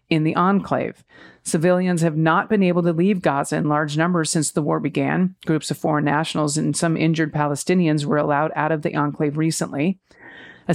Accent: American